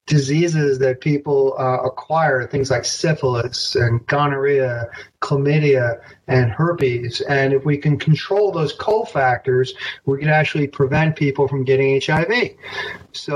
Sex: male